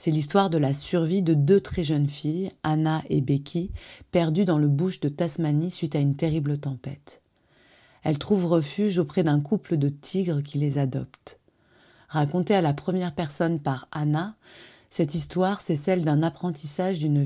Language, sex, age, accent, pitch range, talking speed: French, female, 30-49, French, 145-170 Hz, 170 wpm